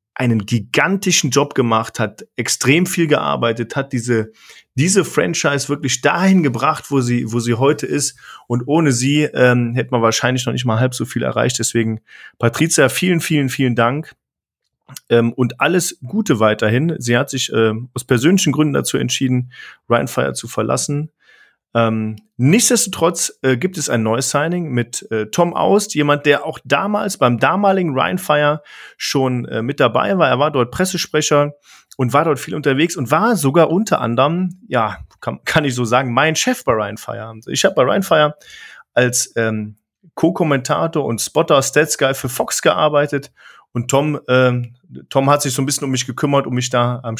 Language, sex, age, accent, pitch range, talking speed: German, male, 40-59, German, 120-155 Hz, 175 wpm